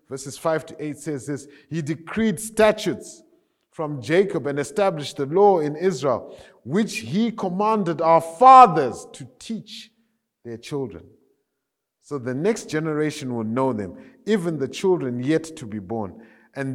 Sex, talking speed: male, 145 wpm